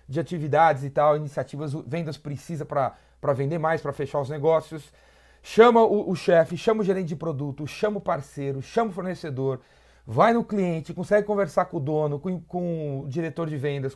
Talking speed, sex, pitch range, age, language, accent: 185 wpm, male, 135-175 Hz, 30-49, Portuguese, Brazilian